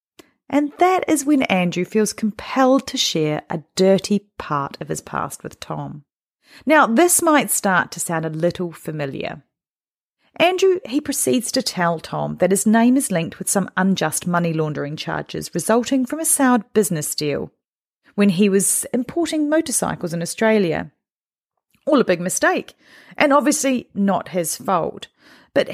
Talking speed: 155 wpm